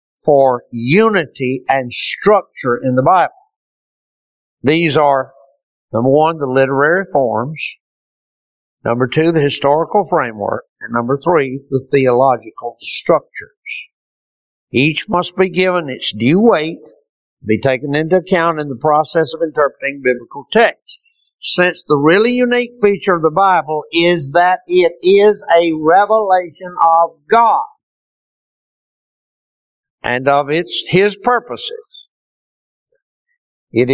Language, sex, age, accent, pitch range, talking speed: English, male, 60-79, American, 140-215 Hz, 115 wpm